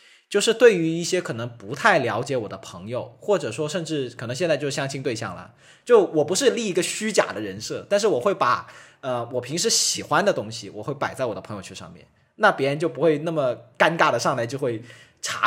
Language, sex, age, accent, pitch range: Chinese, male, 20-39, native, 120-190 Hz